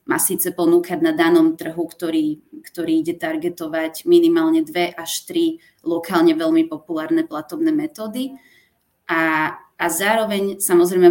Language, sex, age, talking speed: Czech, female, 20-39, 125 wpm